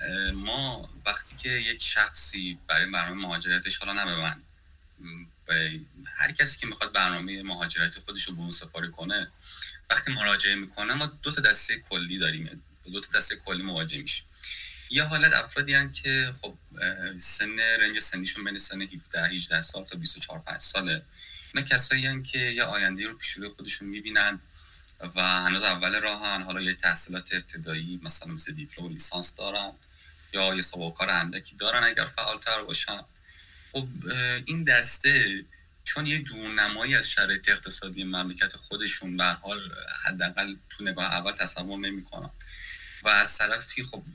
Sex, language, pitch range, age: male, Persian, 90-125 Hz, 30-49